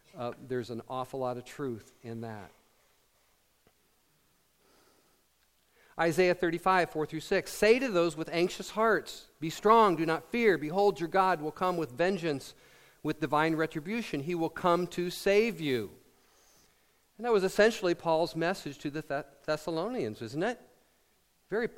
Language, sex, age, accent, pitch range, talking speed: English, male, 50-69, American, 145-185 Hz, 145 wpm